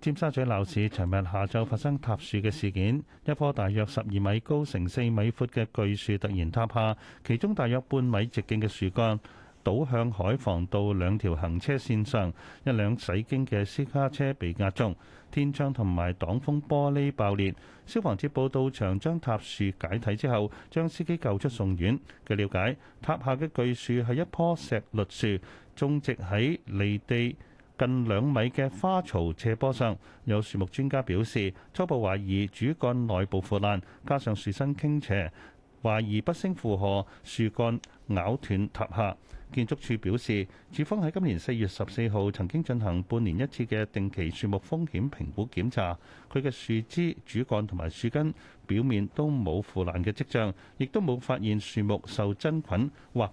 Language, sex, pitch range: Chinese, male, 100-135 Hz